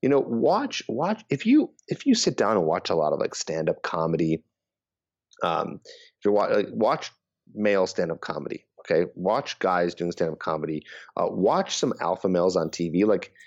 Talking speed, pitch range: 185 wpm, 85-115 Hz